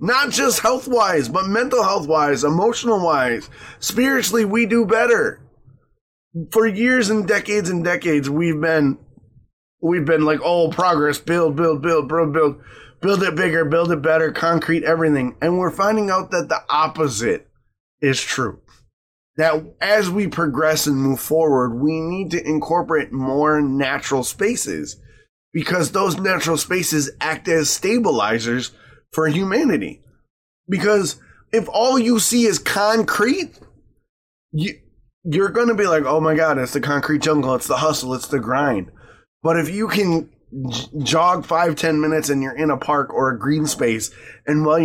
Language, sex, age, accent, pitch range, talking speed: English, male, 20-39, American, 145-185 Hz, 155 wpm